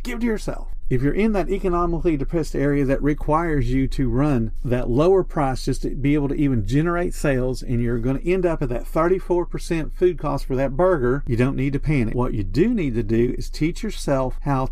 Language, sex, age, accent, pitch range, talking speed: English, male, 50-69, American, 130-170 Hz, 225 wpm